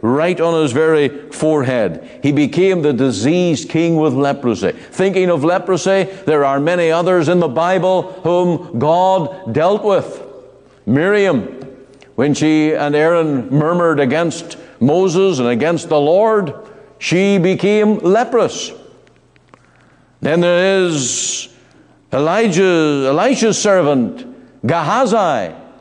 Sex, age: male, 60-79